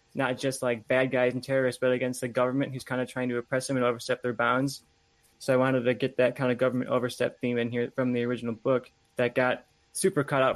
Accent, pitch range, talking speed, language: American, 125-145 Hz, 250 wpm, English